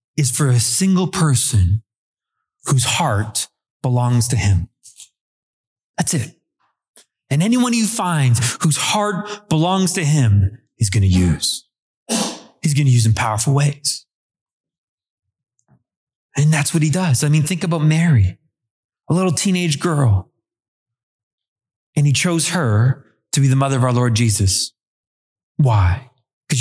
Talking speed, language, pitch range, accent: 135 wpm, English, 110-150 Hz, American